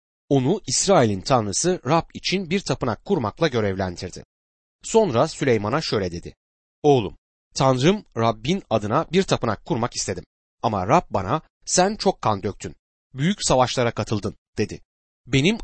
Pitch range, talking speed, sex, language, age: 100-170 Hz, 125 wpm, male, Turkish, 30-49